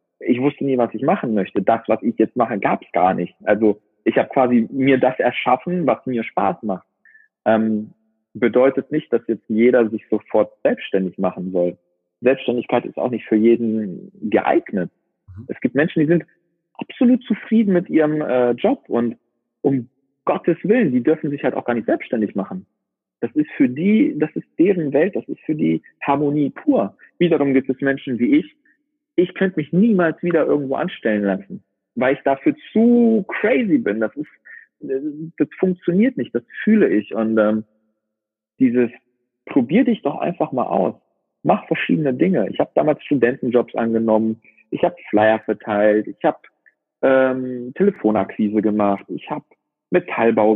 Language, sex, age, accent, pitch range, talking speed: German, male, 40-59, German, 110-165 Hz, 165 wpm